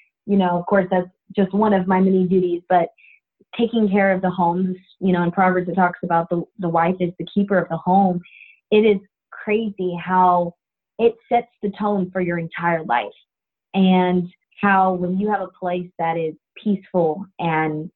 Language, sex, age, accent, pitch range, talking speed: English, female, 20-39, American, 180-210 Hz, 185 wpm